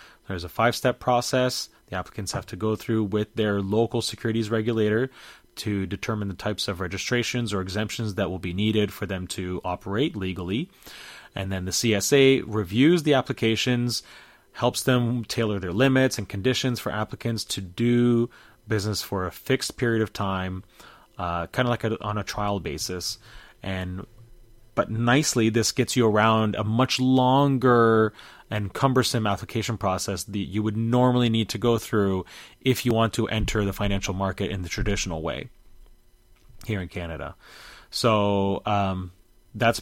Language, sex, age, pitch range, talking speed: English, male, 30-49, 100-120 Hz, 155 wpm